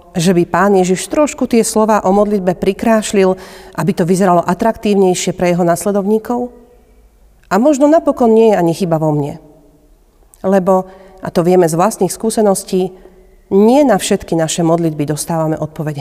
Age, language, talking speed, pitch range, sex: 40-59, Slovak, 150 wpm, 170-225 Hz, female